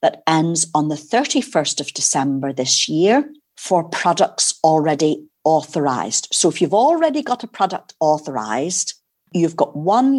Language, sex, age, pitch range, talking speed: English, female, 50-69, 150-205 Hz, 140 wpm